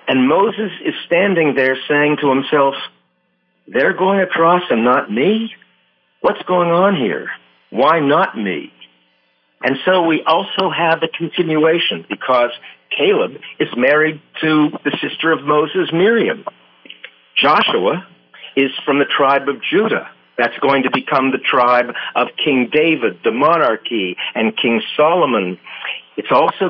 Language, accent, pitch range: English, American, 120-165 Hz